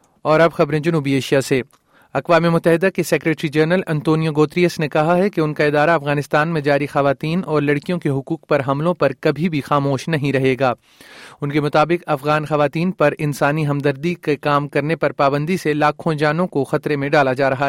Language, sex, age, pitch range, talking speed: Urdu, male, 30-49, 145-160 Hz, 195 wpm